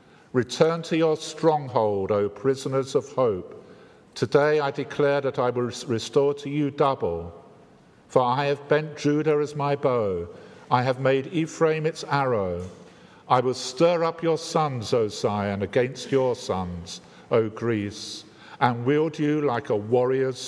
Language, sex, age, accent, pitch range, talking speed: English, male, 50-69, British, 120-150 Hz, 150 wpm